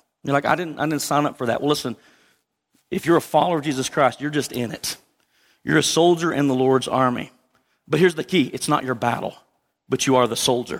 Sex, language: male, English